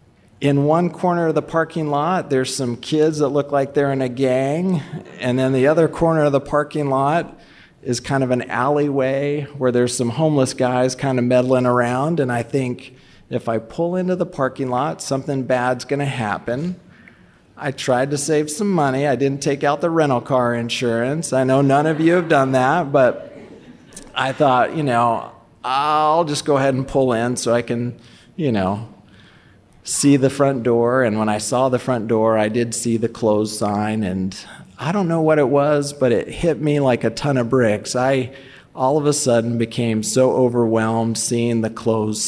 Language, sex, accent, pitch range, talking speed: English, male, American, 115-145 Hz, 195 wpm